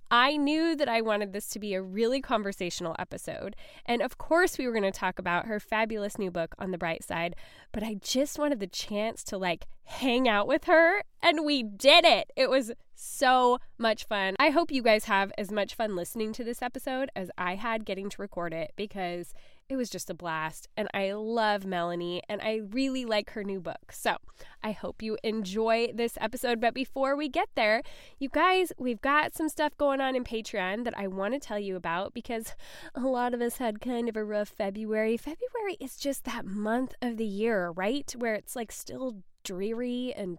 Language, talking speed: English, 210 wpm